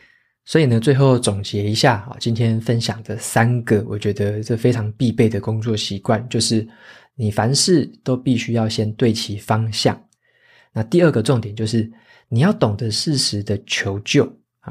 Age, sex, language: 20-39, male, Chinese